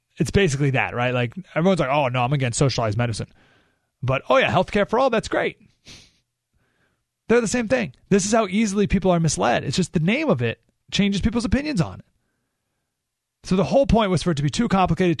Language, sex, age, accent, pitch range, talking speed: English, male, 30-49, American, 125-185 Hz, 215 wpm